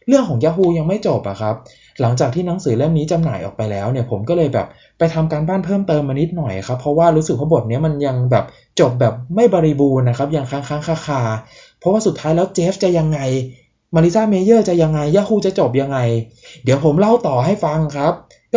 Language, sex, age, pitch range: Thai, male, 20-39, 125-170 Hz